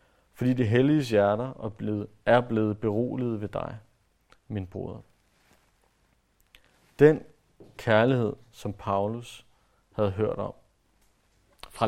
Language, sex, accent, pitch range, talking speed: Danish, male, native, 100-125 Hz, 100 wpm